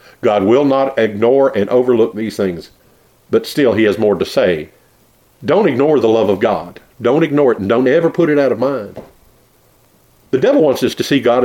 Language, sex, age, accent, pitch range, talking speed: English, male, 50-69, American, 120-170 Hz, 205 wpm